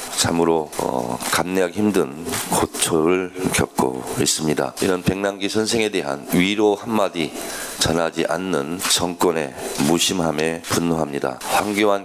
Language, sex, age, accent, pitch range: Korean, male, 40-59, native, 85-105 Hz